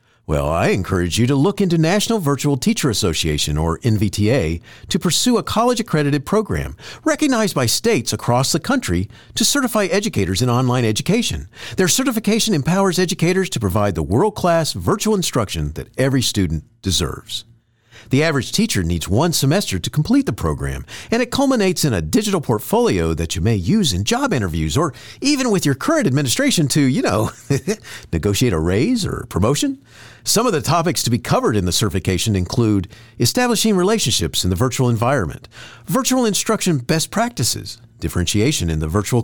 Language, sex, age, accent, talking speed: English, male, 50-69, American, 165 wpm